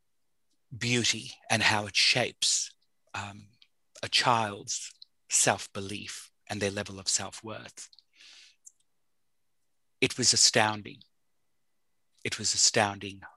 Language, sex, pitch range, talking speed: English, male, 100-120 Hz, 90 wpm